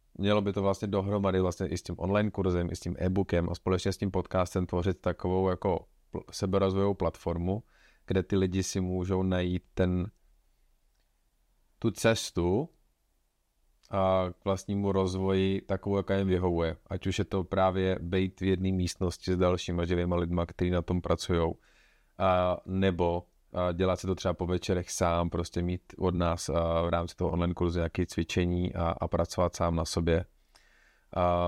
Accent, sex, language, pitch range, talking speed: native, male, Czech, 85-95 Hz, 170 wpm